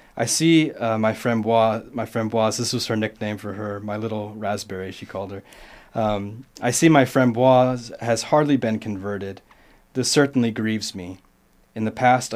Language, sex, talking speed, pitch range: English, male, 175 wpm, 105-120 Hz